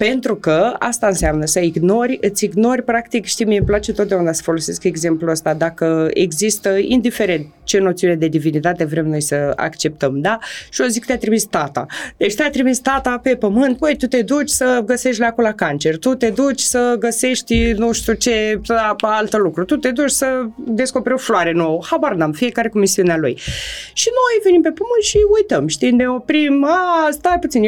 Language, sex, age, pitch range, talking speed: Romanian, female, 20-39, 195-280 Hz, 195 wpm